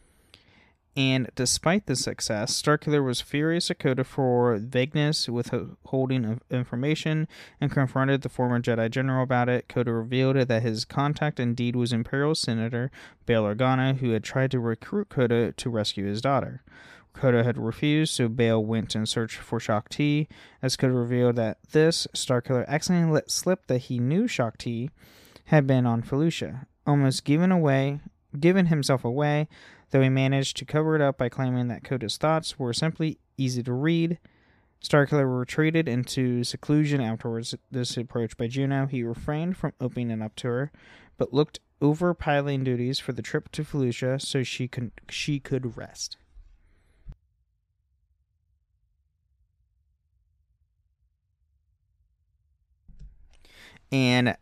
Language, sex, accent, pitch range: English, male, American, 110-140 Hz